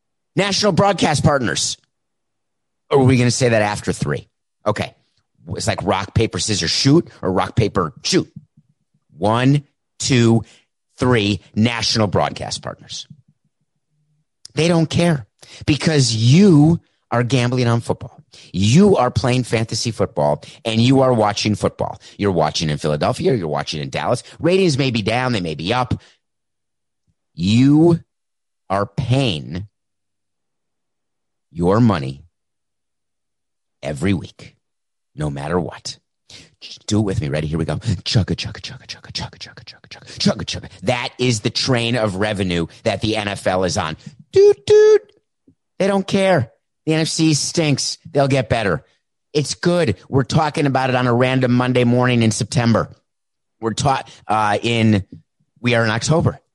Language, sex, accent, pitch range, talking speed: English, male, American, 105-145 Hz, 140 wpm